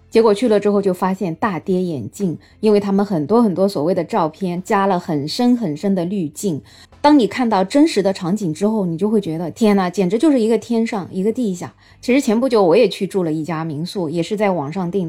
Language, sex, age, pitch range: Chinese, female, 20-39, 180-230 Hz